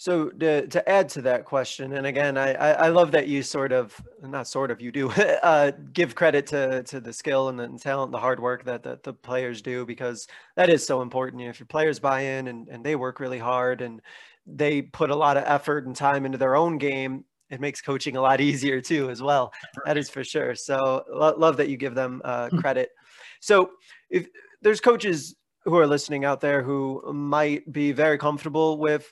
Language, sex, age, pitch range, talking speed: English, male, 20-39, 135-155 Hz, 225 wpm